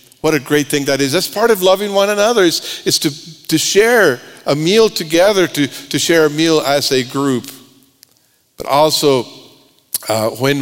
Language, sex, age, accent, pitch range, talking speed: English, male, 50-69, American, 120-155 Hz, 180 wpm